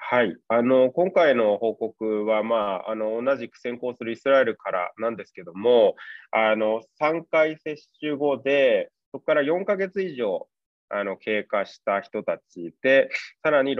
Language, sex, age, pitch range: Japanese, male, 20-39, 120-185 Hz